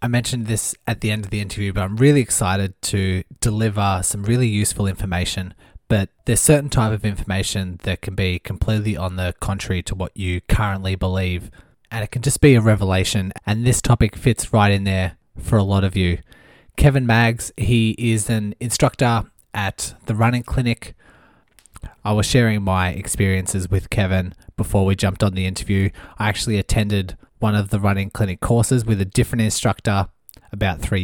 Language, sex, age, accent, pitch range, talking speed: English, male, 20-39, Australian, 95-110 Hz, 180 wpm